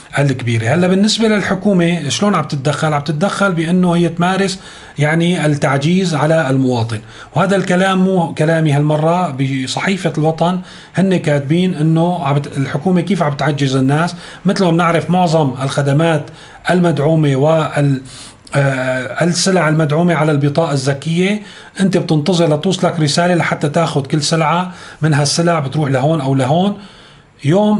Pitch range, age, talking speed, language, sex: 145-175 Hz, 30-49, 120 wpm, Arabic, male